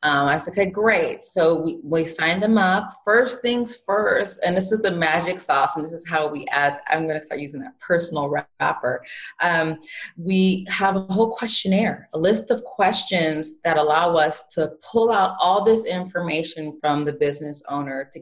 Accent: American